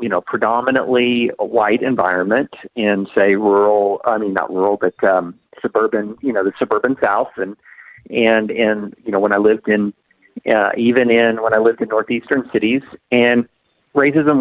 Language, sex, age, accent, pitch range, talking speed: English, male, 40-59, American, 110-155 Hz, 165 wpm